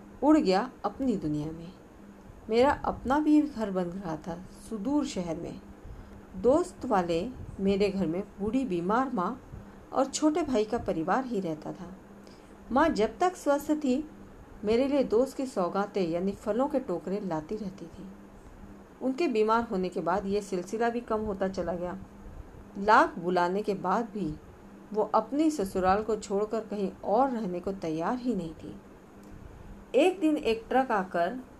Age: 50-69